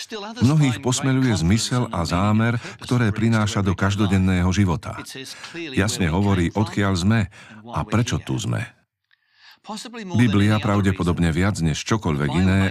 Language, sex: Slovak, male